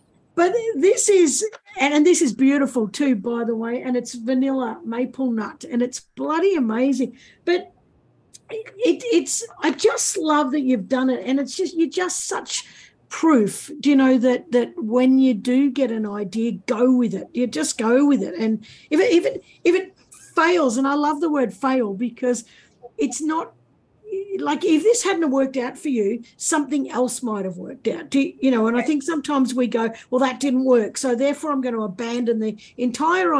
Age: 50-69